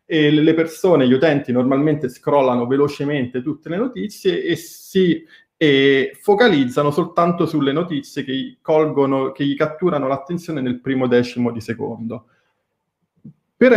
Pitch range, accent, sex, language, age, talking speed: 130-170 Hz, native, male, Italian, 20-39, 125 wpm